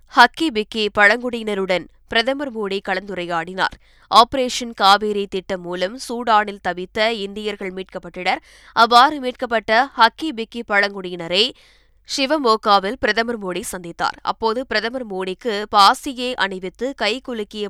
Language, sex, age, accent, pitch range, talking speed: Tamil, female, 20-39, native, 190-230 Hz, 100 wpm